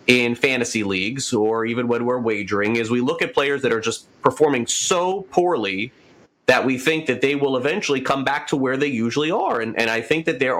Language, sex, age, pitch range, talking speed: English, male, 30-49, 110-145 Hz, 220 wpm